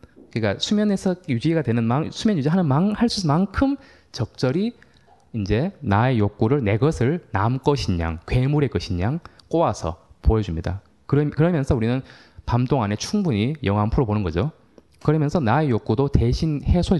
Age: 20-39